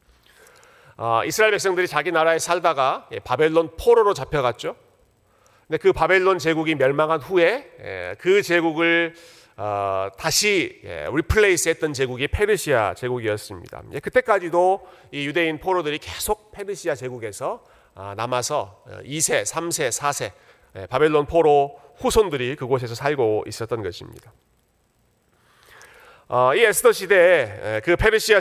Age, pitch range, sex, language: 40-59, 125-185 Hz, male, Korean